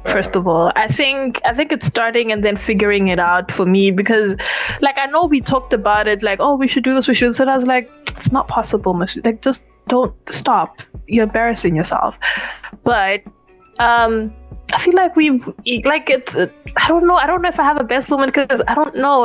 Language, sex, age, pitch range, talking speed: English, female, 20-39, 215-270 Hz, 220 wpm